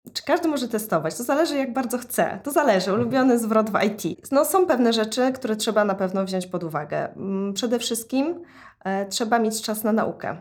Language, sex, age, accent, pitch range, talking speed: Polish, female, 20-39, native, 190-235 Hz, 185 wpm